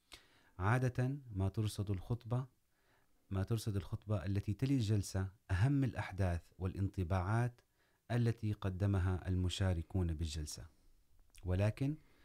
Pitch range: 95-110 Hz